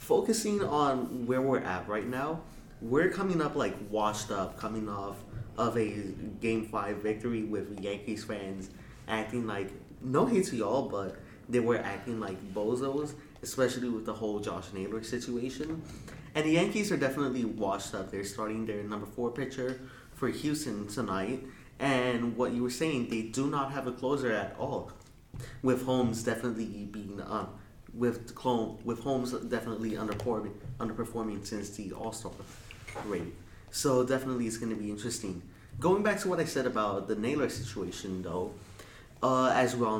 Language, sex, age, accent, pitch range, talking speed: English, male, 20-39, American, 105-130 Hz, 160 wpm